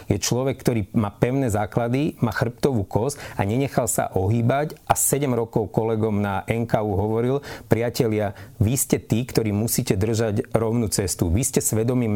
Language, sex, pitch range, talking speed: Slovak, male, 110-130 Hz, 160 wpm